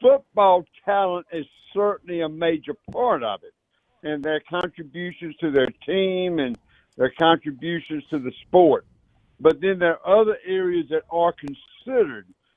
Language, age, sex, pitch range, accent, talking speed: English, 60-79, male, 145-170 Hz, American, 145 wpm